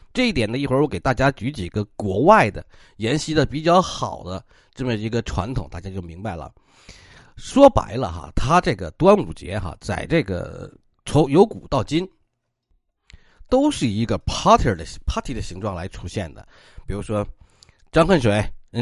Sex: male